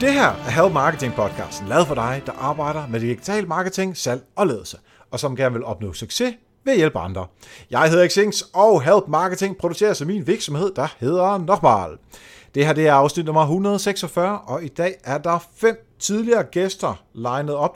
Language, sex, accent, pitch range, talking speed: Danish, male, native, 115-175 Hz, 185 wpm